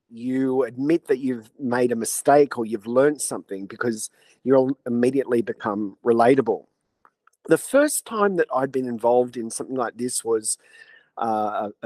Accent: Australian